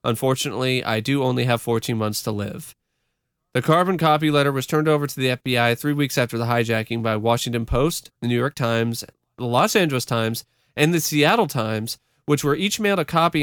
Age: 30-49